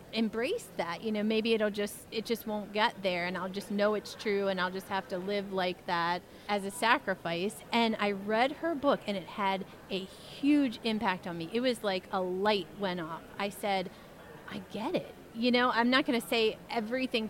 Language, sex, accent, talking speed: English, female, American, 215 wpm